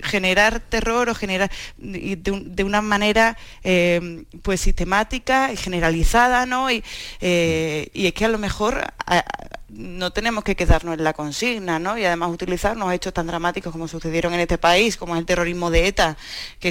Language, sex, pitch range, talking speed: Spanish, female, 170-200 Hz, 190 wpm